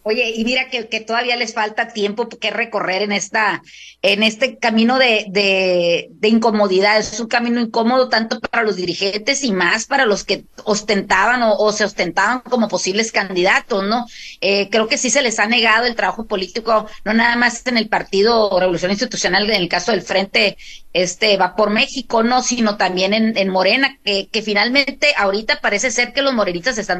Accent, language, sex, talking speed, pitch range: Mexican, Spanish, female, 195 wpm, 190-235 Hz